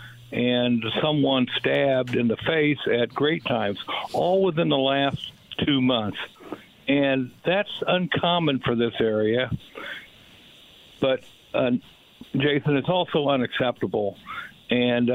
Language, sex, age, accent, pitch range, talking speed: English, male, 60-79, American, 125-165 Hz, 110 wpm